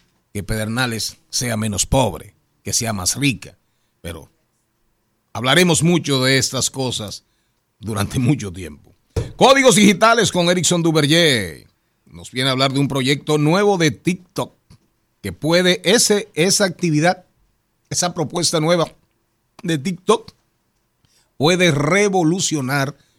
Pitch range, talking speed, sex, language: 120-170 Hz, 115 wpm, male, Spanish